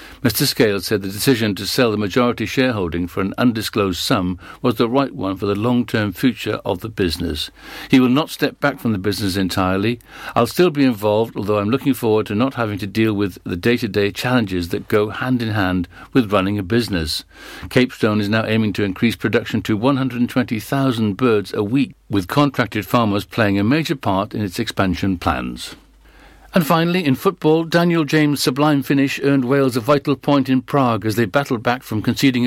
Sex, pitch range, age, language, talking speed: male, 105-135 Hz, 60-79, English, 190 wpm